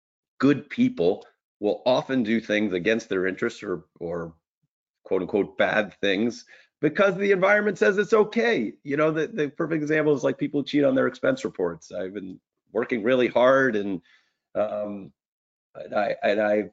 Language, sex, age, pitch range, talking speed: English, male, 30-49, 90-130 Hz, 165 wpm